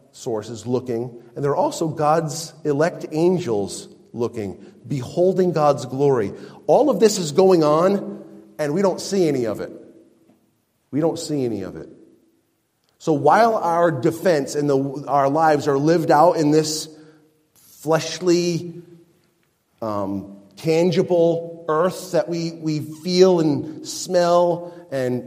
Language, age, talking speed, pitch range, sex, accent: English, 30-49, 130 wpm, 115-165 Hz, male, American